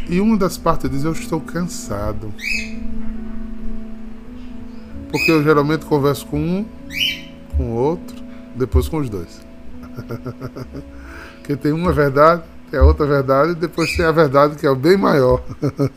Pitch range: 95-160 Hz